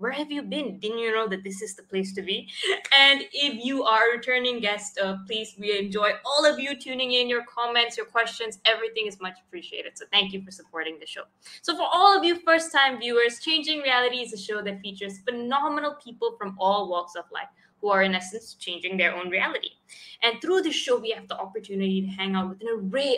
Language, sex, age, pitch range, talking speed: English, female, 20-39, 195-265 Hz, 230 wpm